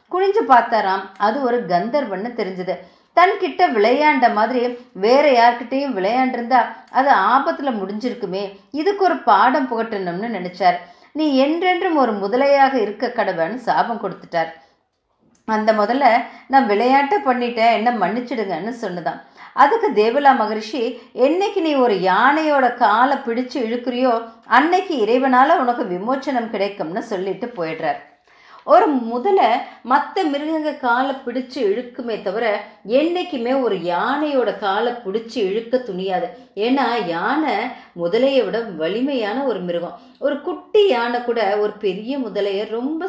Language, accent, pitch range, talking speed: Tamil, native, 210-275 Hz, 115 wpm